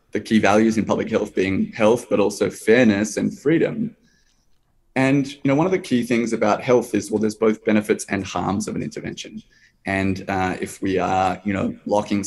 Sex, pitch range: male, 105-120 Hz